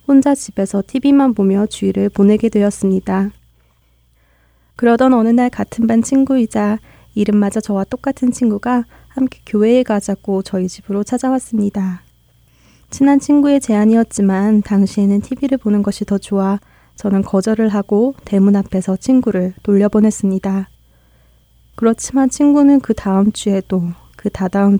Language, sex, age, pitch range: Korean, female, 20-39, 200-245 Hz